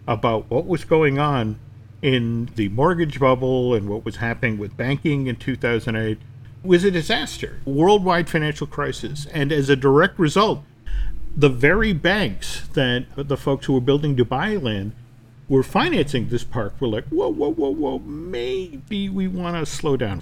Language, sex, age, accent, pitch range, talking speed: English, male, 50-69, American, 120-160 Hz, 170 wpm